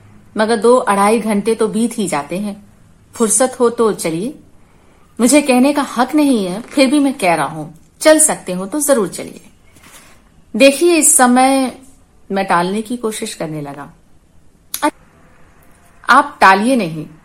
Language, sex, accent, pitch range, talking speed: Hindi, female, native, 195-260 Hz, 150 wpm